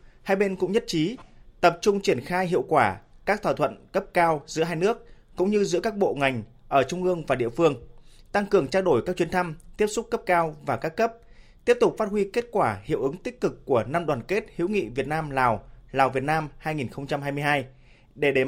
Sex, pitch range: male, 135-190 Hz